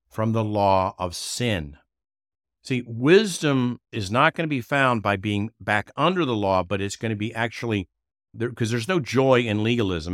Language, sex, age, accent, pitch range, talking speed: English, male, 50-69, American, 95-125 Hz, 190 wpm